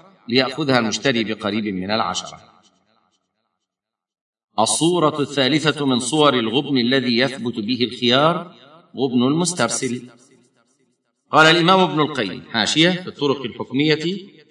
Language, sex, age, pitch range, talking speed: Arabic, male, 50-69, 115-145 Hz, 100 wpm